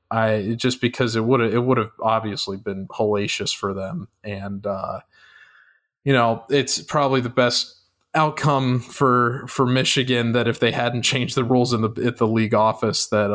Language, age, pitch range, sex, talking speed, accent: English, 20-39, 105-120 Hz, male, 175 wpm, American